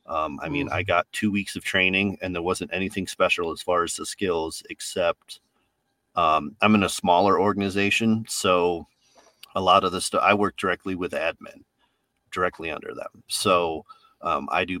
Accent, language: American, English